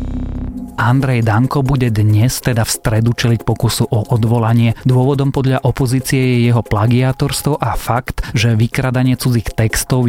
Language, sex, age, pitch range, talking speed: Slovak, male, 30-49, 110-125 Hz, 135 wpm